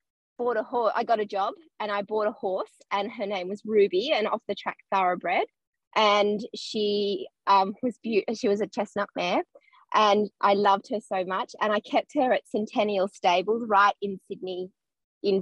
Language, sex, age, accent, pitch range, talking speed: English, female, 20-39, Australian, 200-255 Hz, 190 wpm